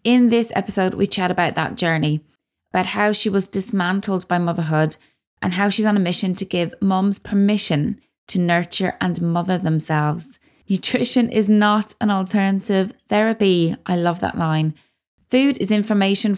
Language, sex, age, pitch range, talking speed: English, female, 20-39, 175-210 Hz, 160 wpm